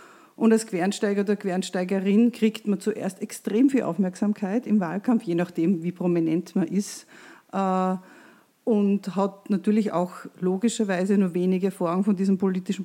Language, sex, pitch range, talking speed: German, female, 175-205 Hz, 140 wpm